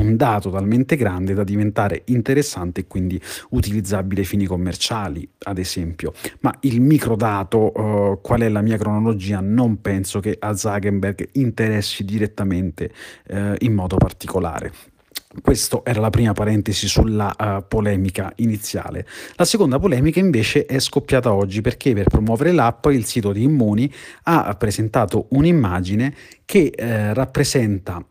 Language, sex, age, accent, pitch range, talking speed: Italian, male, 30-49, native, 100-120 Hz, 135 wpm